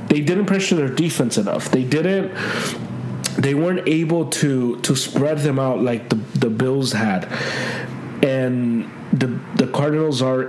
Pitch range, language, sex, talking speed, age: 125-155 Hz, English, male, 150 wpm, 30-49